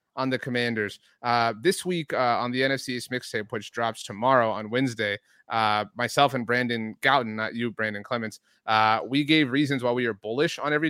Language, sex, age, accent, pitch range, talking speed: English, male, 30-49, American, 125-170 Hz, 200 wpm